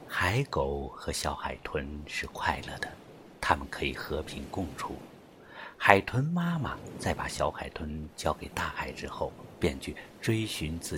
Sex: male